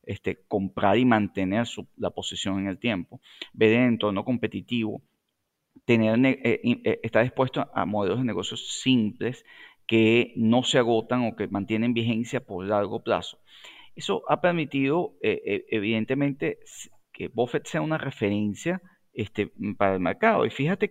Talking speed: 145 wpm